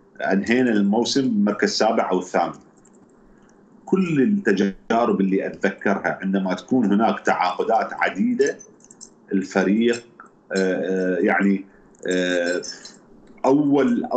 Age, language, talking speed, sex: 40-59, Arabic, 75 wpm, male